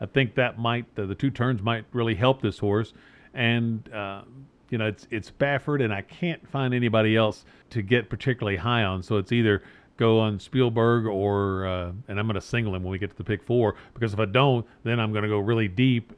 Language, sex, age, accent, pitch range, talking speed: English, male, 40-59, American, 105-135 Hz, 235 wpm